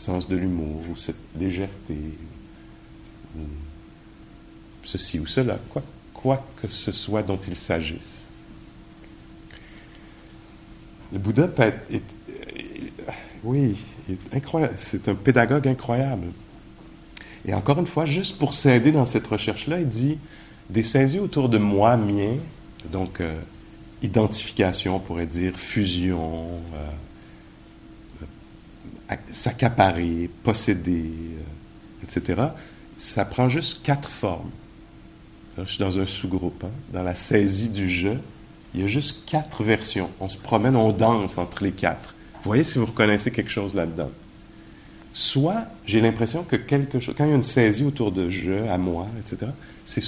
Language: English